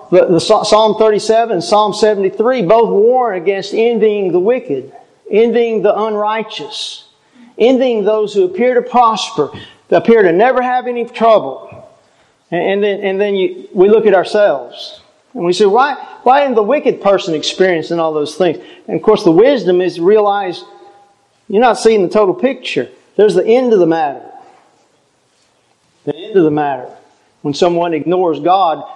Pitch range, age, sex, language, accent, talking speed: 170-230 Hz, 50-69, male, English, American, 155 wpm